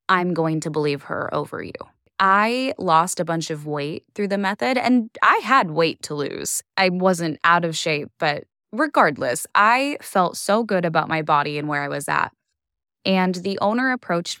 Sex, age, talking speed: female, 10-29, 190 wpm